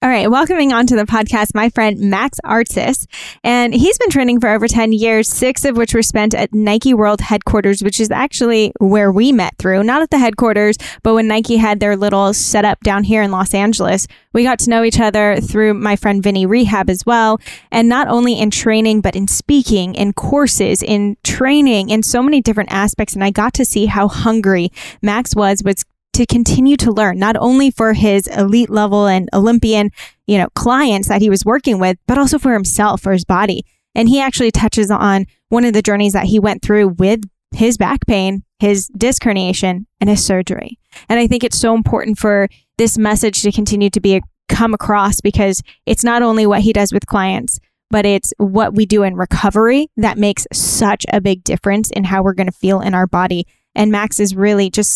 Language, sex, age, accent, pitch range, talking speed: English, female, 10-29, American, 200-230 Hz, 210 wpm